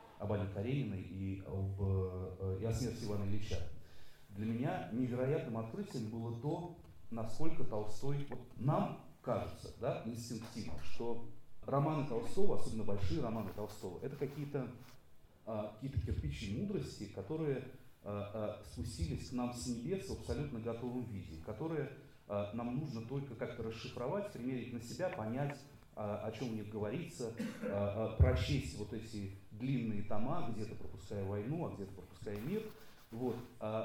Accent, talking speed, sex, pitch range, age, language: native, 130 wpm, male, 105-135 Hz, 30-49, Russian